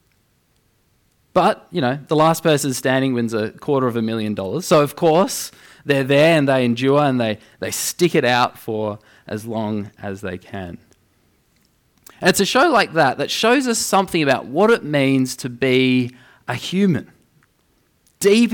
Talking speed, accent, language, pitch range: 170 wpm, Australian, English, 120-175 Hz